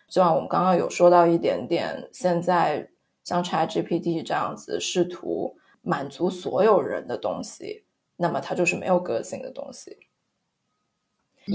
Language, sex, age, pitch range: Chinese, female, 20-39, 175-230 Hz